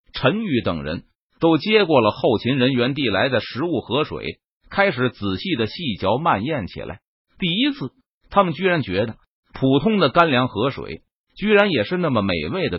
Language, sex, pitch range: Chinese, male, 115-185 Hz